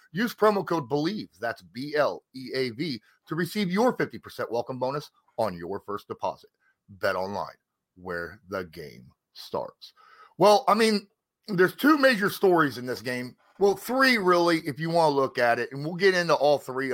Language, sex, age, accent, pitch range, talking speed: English, male, 30-49, American, 125-180 Hz, 170 wpm